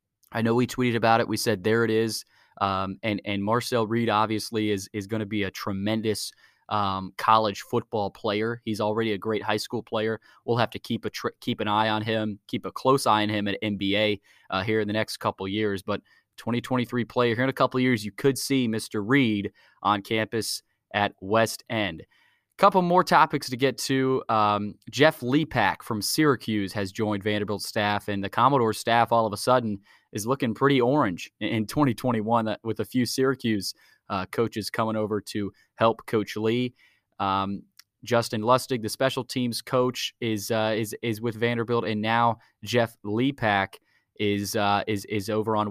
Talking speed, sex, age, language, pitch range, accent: 190 wpm, male, 20-39, English, 105-120 Hz, American